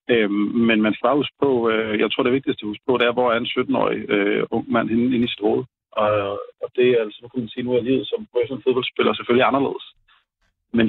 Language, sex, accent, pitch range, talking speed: Danish, male, native, 110-135 Hz, 225 wpm